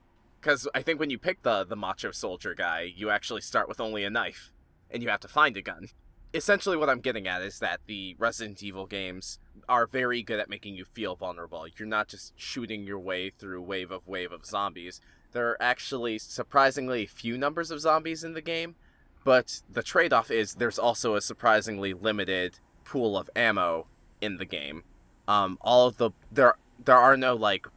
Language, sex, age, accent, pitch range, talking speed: English, male, 20-39, American, 90-120 Hz, 195 wpm